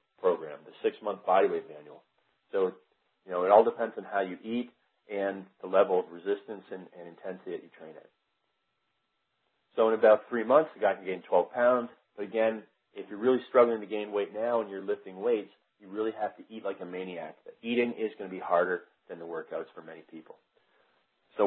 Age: 40-59